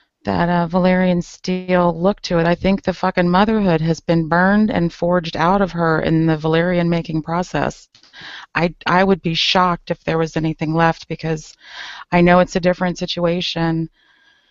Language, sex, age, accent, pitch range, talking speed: English, female, 40-59, American, 155-175 Hz, 175 wpm